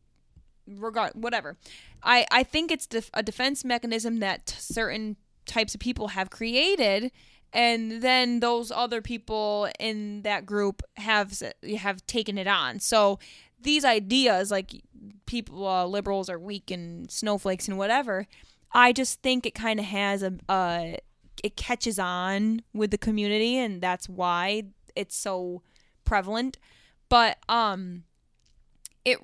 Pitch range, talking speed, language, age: 200-240 Hz, 140 wpm, English, 20-39